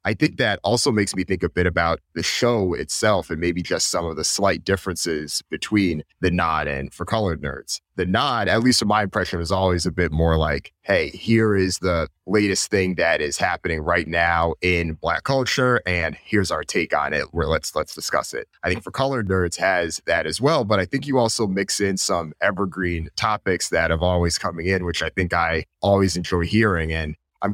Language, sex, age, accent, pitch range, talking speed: English, male, 30-49, American, 85-100 Hz, 215 wpm